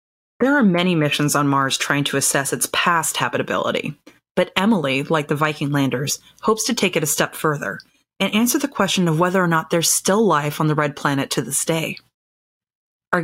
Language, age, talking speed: English, 30-49, 200 wpm